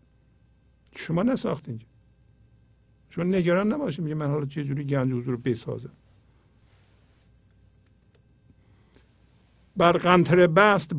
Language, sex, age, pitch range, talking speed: Persian, male, 50-69, 120-170 Hz, 80 wpm